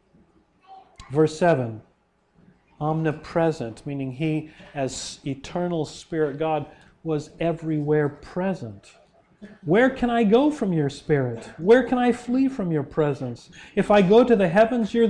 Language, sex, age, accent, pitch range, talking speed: English, male, 40-59, American, 140-190 Hz, 130 wpm